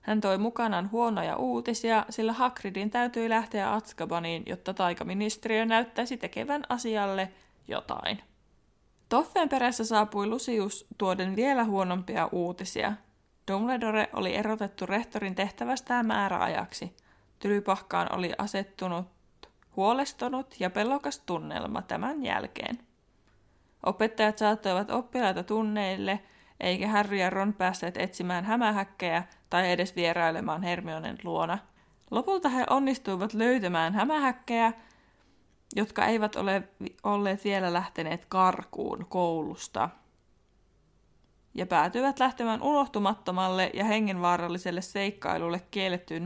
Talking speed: 100 wpm